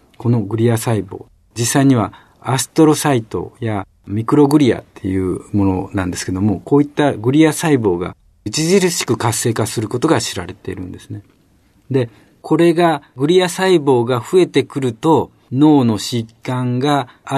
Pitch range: 105-145 Hz